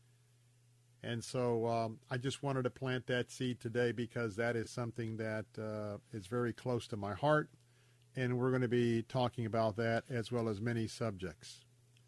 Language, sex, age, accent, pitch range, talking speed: English, male, 50-69, American, 120-135 Hz, 180 wpm